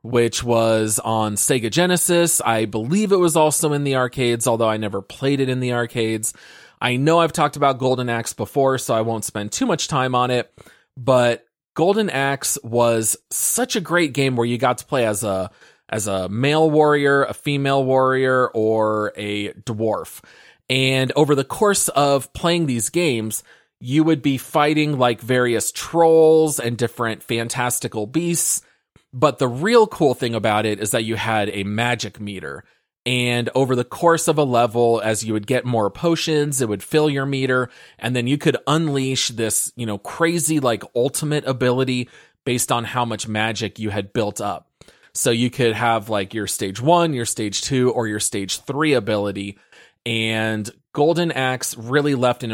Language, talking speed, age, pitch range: English, 180 wpm, 30-49, 110-145 Hz